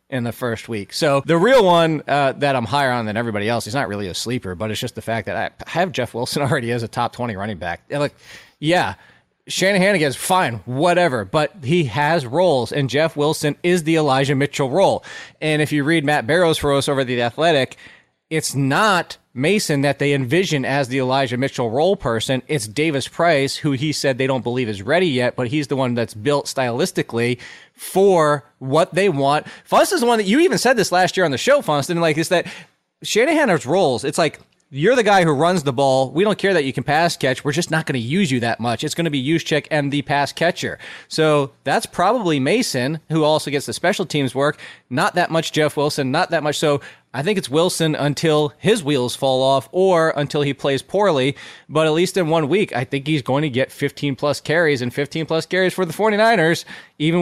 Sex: male